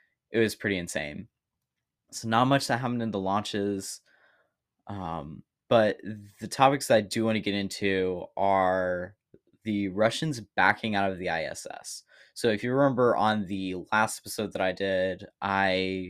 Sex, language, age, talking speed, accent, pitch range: male, English, 20-39, 155 wpm, American, 95-115 Hz